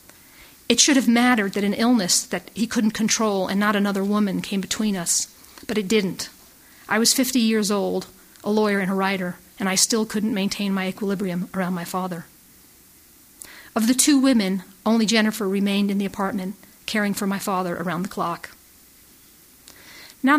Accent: American